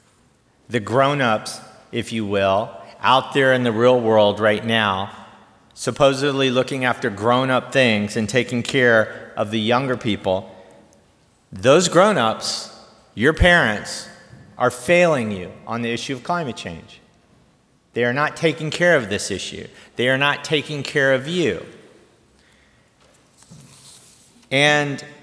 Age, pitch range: 50-69, 110-145 Hz